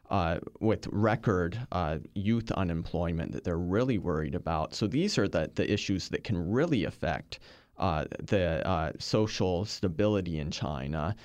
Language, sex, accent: English, male, American